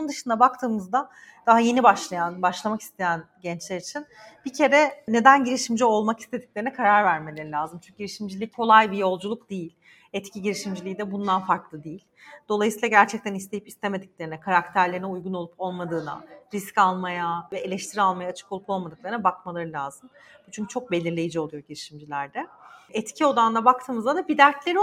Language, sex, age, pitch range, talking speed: Turkish, female, 40-59, 175-225 Hz, 145 wpm